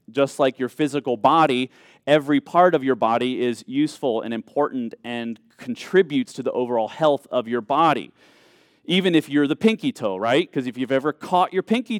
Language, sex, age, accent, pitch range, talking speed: English, male, 30-49, American, 115-170 Hz, 185 wpm